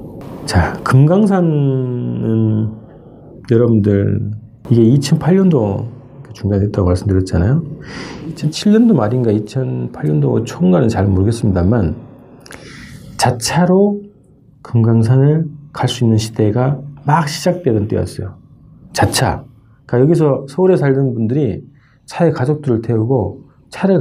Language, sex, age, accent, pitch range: Korean, male, 40-59, native, 105-140 Hz